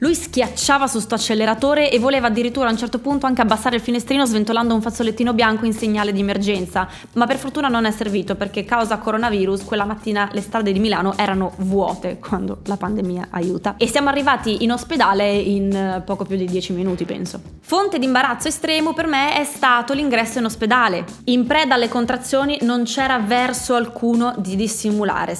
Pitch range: 205-260 Hz